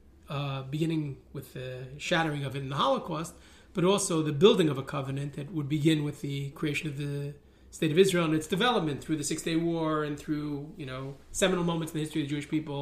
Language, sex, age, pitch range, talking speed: English, male, 30-49, 140-165 Hz, 225 wpm